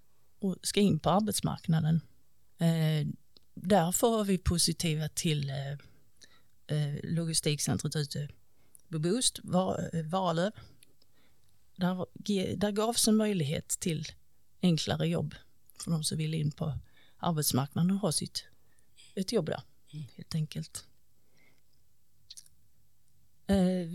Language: Swedish